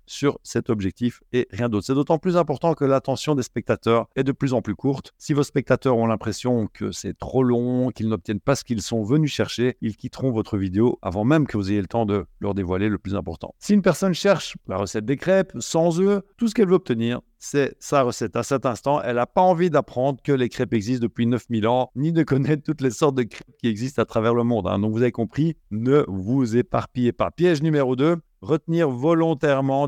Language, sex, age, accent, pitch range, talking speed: French, male, 50-69, French, 115-150 Hz, 230 wpm